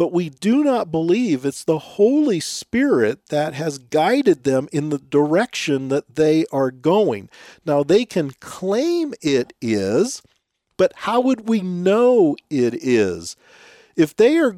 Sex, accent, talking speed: male, American, 150 wpm